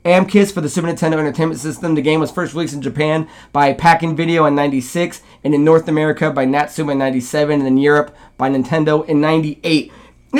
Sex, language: male, English